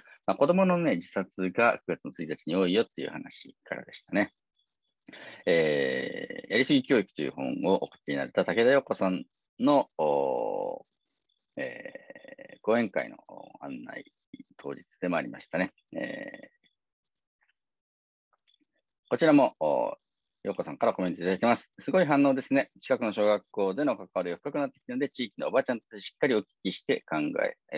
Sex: male